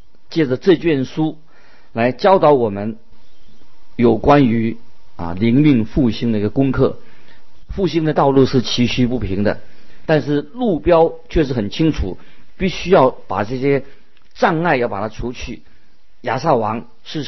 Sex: male